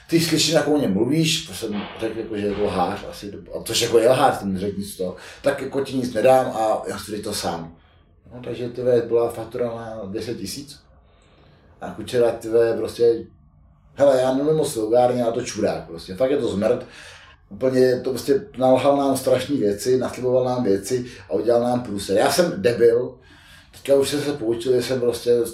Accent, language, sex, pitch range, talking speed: native, Czech, male, 100-125 Hz, 195 wpm